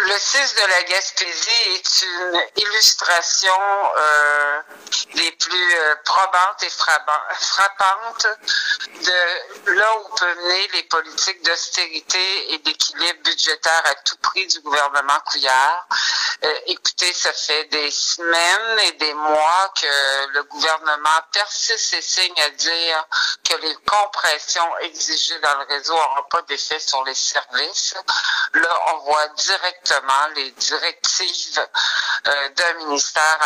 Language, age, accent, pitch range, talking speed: French, 60-79, French, 140-180 Hz, 125 wpm